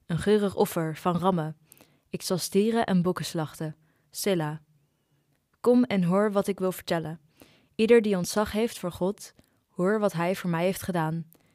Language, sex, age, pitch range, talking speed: Dutch, female, 20-39, 160-195 Hz, 165 wpm